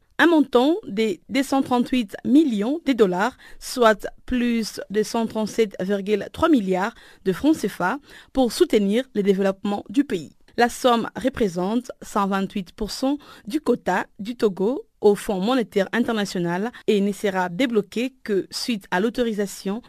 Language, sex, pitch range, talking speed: French, female, 200-255 Hz, 125 wpm